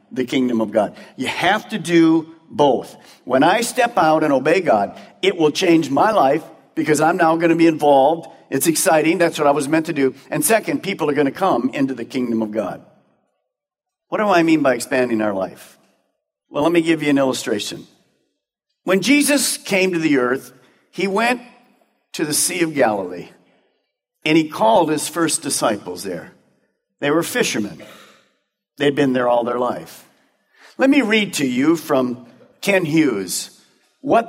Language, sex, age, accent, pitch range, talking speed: English, male, 50-69, American, 150-210 Hz, 180 wpm